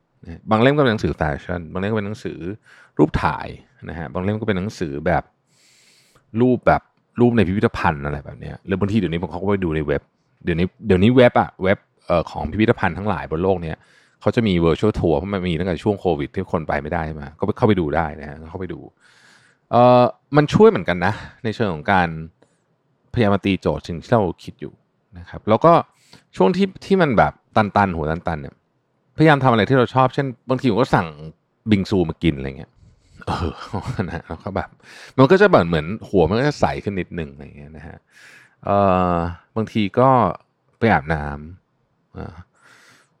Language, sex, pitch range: Thai, male, 85-125 Hz